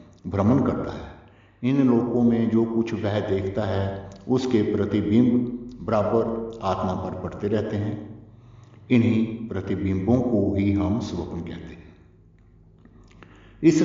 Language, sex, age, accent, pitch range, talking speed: Hindi, male, 60-79, native, 95-120 Hz, 120 wpm